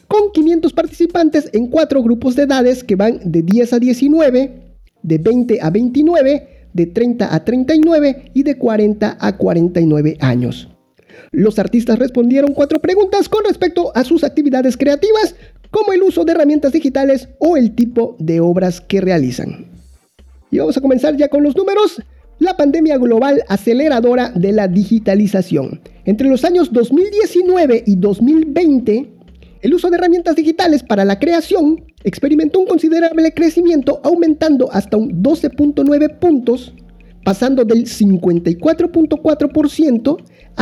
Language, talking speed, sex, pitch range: Spanish, 135 wpm, male, 210-320 Hz